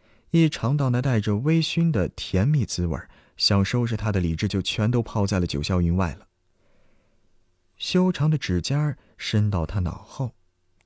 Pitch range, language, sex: 90-115 Hz, Chinese, male